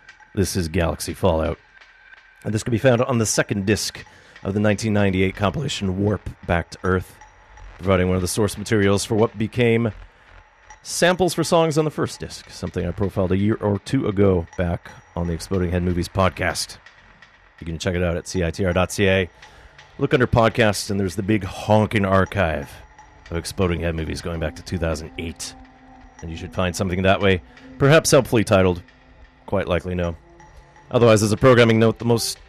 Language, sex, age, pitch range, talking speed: English, male, 30-49, 85-105 Hz, 175 wpm